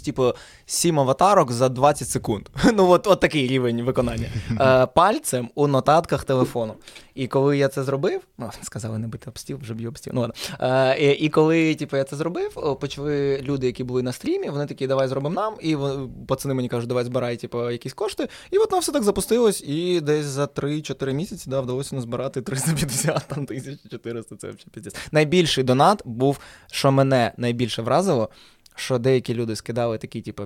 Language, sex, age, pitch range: Ukrainian, male, 20-39, 120-160 Hz